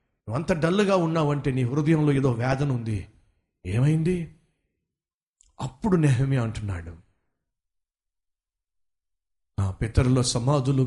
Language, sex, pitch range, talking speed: Telugu, male, 105-160 Hz, 85 wpm